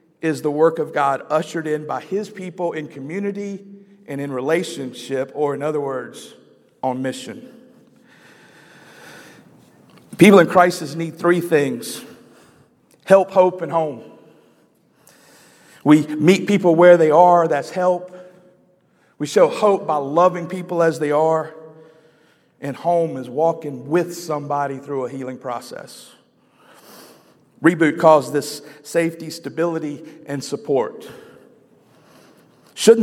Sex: male